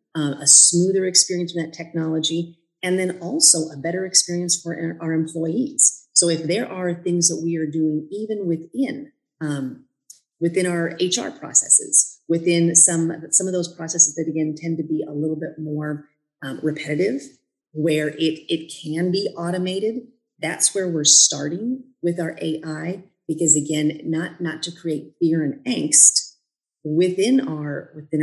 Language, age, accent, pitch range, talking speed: English, 40-59, American, 150-180 Hz, 155 wpm